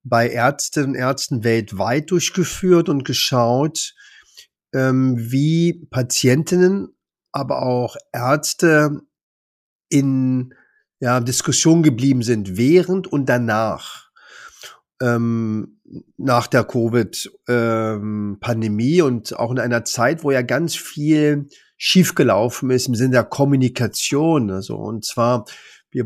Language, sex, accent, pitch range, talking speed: German, male, German, 120-150 Hz, 95 wpm